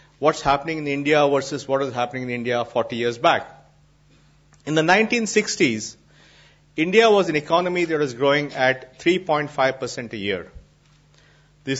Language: English